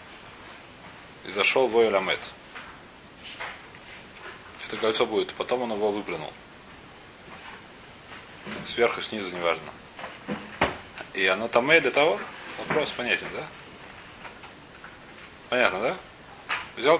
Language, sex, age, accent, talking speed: Russian, male, 30-49, native, 90 wpm